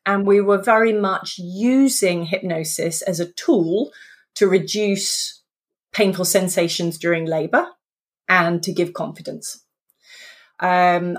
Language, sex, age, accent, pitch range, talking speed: English, female, 30-49, British, 170-210 Hz, 115 wpm